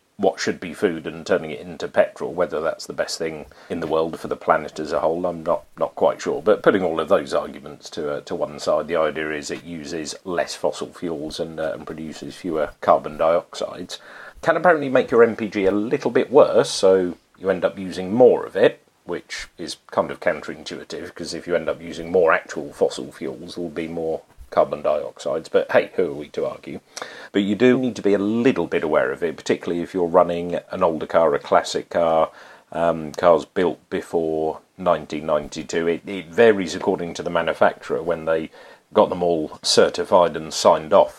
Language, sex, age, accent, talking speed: English, male, 40-59, British, 205 wpm